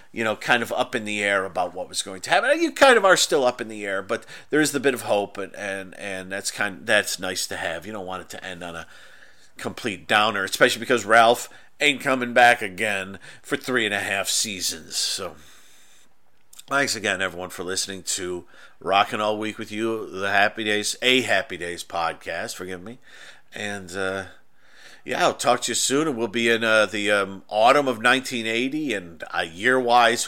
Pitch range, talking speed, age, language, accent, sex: 100-125 Hz, 210 wpm, 40-59, English, American, male